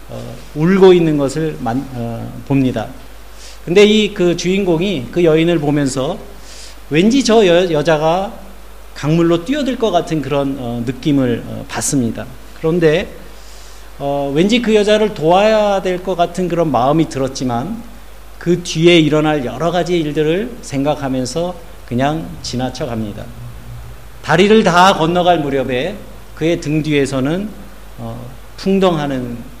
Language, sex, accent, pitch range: Korean, male, native, 125-175 Hz